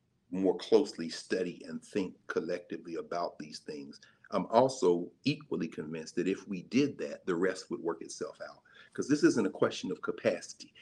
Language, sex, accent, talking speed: English, male, American, 170 wpm